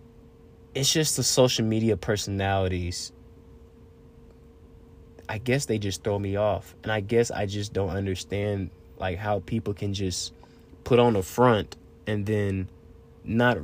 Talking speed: 140 wpm